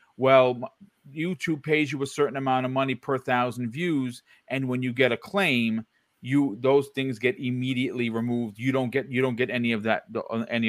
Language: English